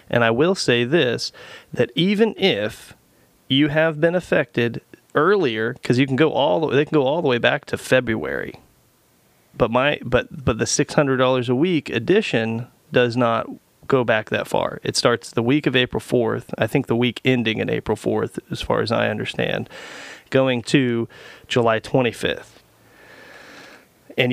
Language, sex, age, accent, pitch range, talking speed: English, male, 30-49, American, 115-130 Hz, 160 wpm